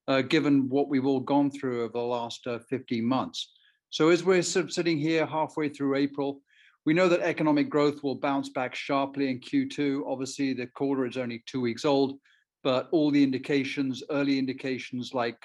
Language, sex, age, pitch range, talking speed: English, male, 50-69, 120-140 Hz, 190 wpm